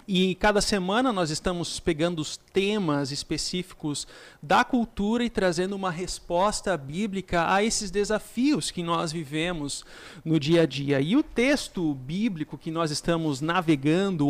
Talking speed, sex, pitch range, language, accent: 145 wpm, male, 160-205 Hz, Portuguese, Brazilian